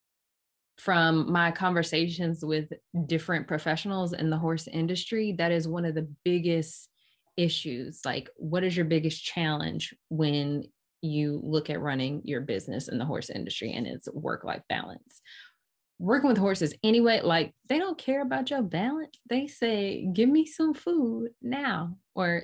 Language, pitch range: English, 155-210 Hz